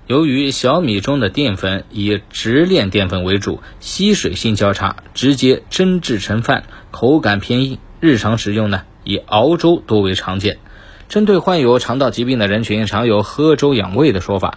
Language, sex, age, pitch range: Chinese, male, 20-39, 100-135 Hz